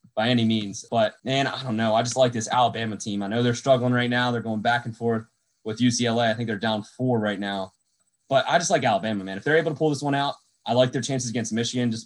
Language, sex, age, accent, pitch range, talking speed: English, male, 20-39, American, 110-130 Hz, 275 wpm